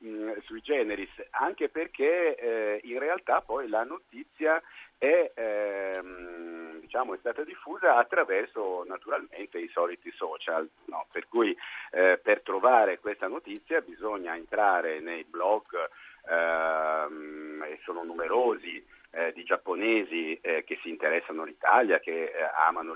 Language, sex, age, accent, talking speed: Italian, male, 50-69, native, 125 wpm